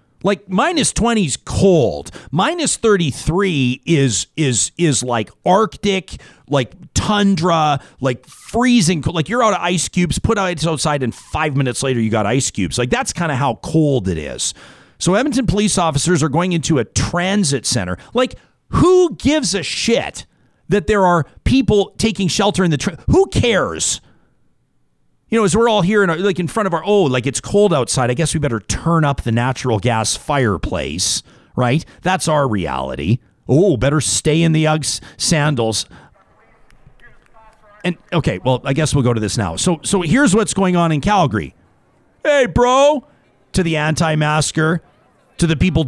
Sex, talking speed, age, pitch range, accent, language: male, 175 wpm, 40-59, 130-195 Hz, American, English